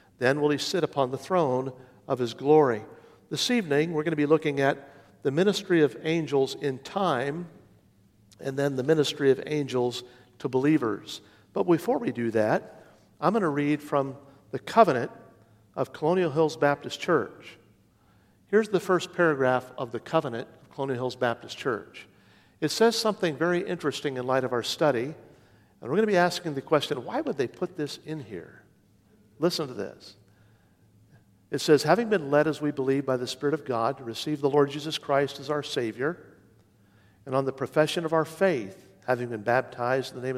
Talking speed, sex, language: 185 wpm, male, English